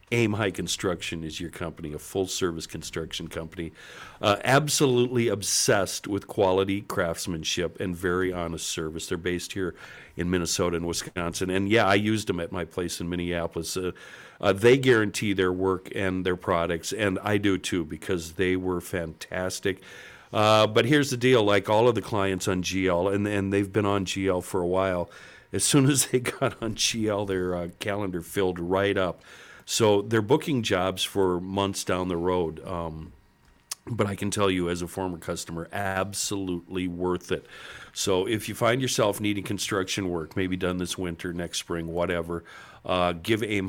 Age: 50-69